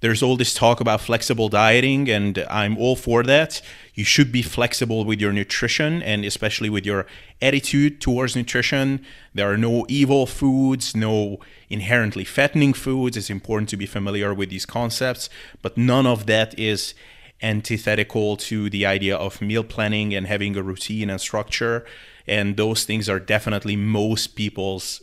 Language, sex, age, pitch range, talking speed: English, male, 30-49, 105-125 Hz, 165 wpm